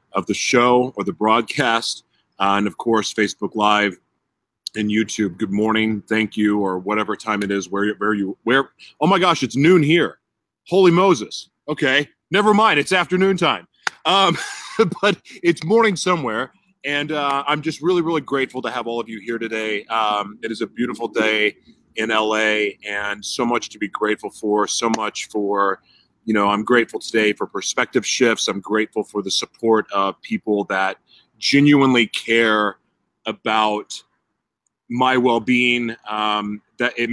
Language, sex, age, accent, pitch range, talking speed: English, male, 30-49, American, 105-145 Hz, 165 wpm